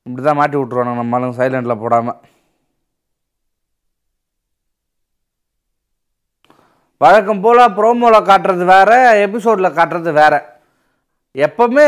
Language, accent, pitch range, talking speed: Tamil, native, 165-235 Hz, 75 wpm